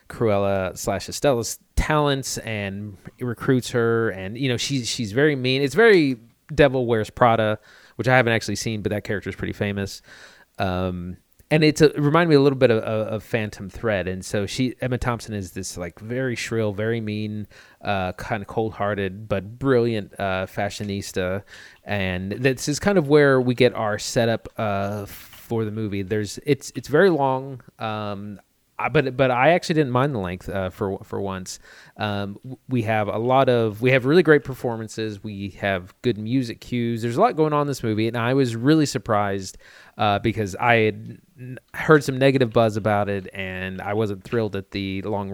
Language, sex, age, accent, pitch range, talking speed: English, male, 30-49, American, 100-130 Hz, 190 wpm